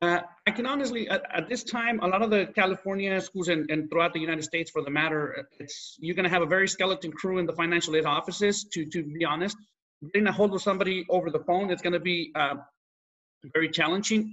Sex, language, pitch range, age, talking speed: male, English, 155-190 Hz, 30-49, 220 wpm